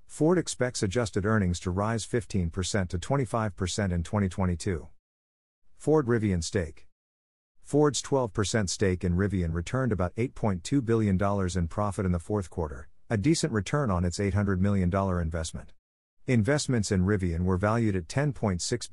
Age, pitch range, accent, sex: 50-69, 90-115 Hz, American, male